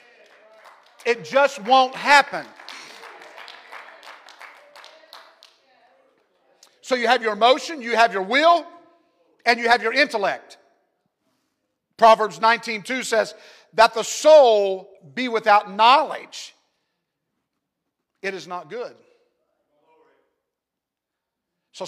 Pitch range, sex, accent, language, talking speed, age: 205-280 Hz, male, American, English, 90 wpm, 50-69